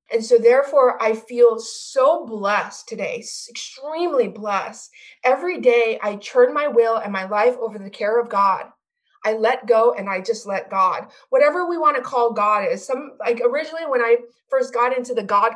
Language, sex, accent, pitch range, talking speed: English, female, American, 215-295 Hz, 190 wpm